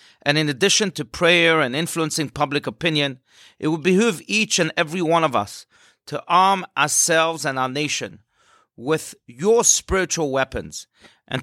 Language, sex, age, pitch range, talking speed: English, male, 40-59, 130-160 Hz, 150 wpm